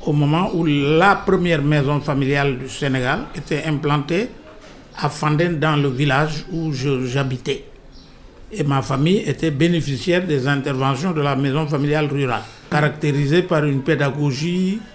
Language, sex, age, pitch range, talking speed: French, male, 60-79, 145-180 Hz, 135 wpm